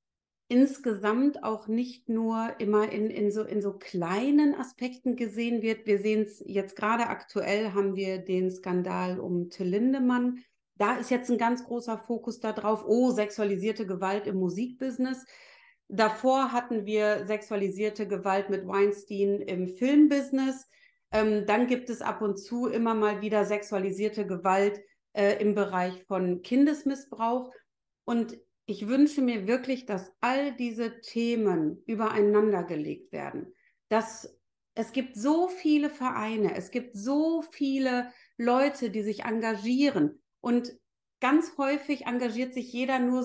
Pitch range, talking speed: 210-260 Hz, 135 wpm